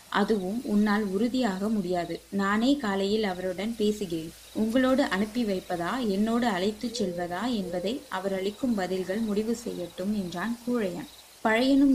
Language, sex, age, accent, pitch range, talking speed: Tamil, female, 20-39, native, 190-240 Hz, 115 wpm